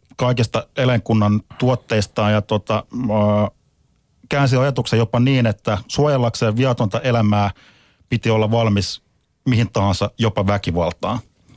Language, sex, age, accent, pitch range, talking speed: Finnish, male, 30-49, native, 100-115 Hz, 105 wpm